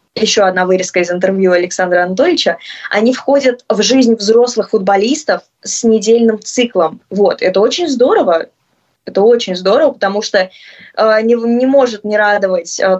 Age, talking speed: 20-39, 145 wpm